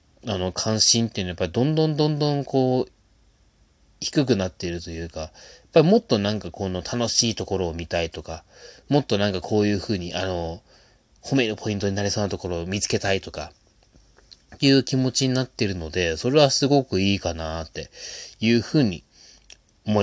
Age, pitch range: 30-49, 85-120 Hz